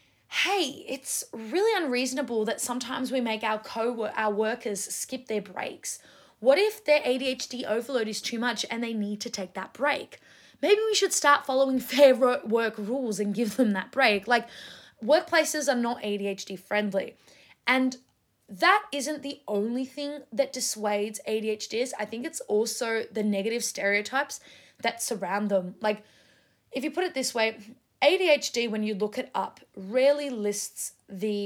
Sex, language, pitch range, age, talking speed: female, English, 205-260 Hz, 20-39, 160 wpm